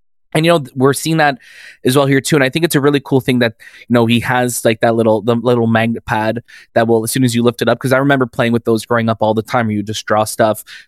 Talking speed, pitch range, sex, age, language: 305 wpm, 115-140 Hz, male, 20-39, English